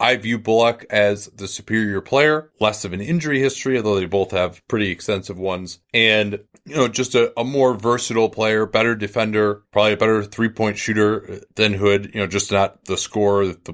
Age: 30-49